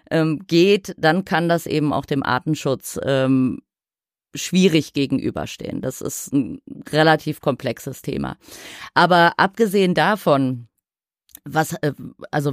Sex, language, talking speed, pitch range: female, German, 105 wpm, 150-195 Hz